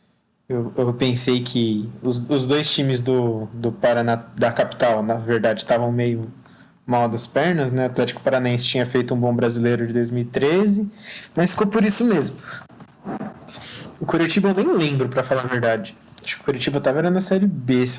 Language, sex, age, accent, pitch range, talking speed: Portuguese, male, 20-39, Brazilian, 125-180 Hz, 180 wpm